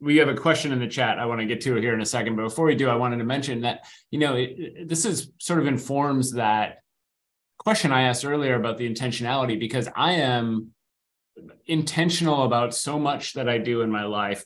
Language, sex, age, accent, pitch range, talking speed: English, male, 30-49, American, 110-140 Hz, 220 wpm